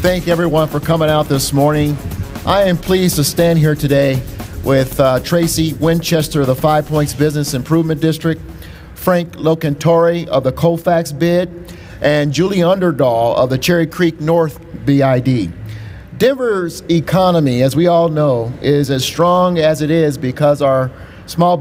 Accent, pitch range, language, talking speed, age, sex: American, 140-170 Hz, English, 155 wpm, 50-69, male